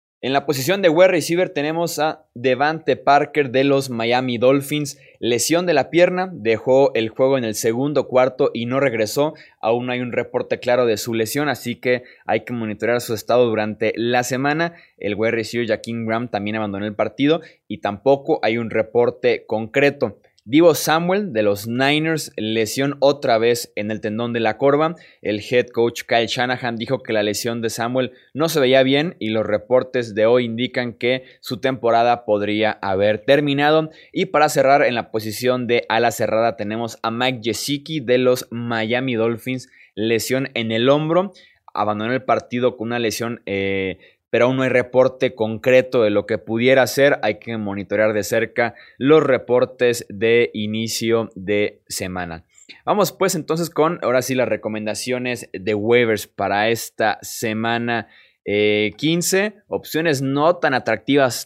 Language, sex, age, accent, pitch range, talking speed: Spanish, male, 20-39, Mexican, 110-140 Hz, 165 wpm